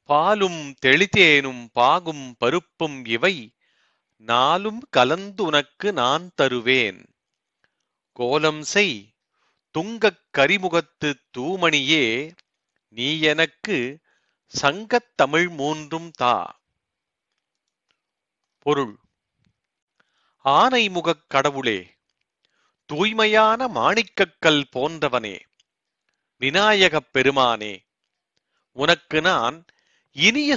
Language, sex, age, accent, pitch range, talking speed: Tamil, male, 40-59, native, 140-205 Hz, 65 wpm